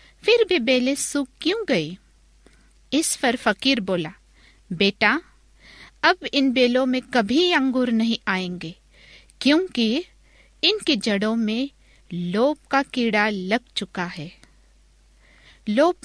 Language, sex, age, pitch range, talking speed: Hindi, female, 50-69, 205-280 Hz, 110 wpm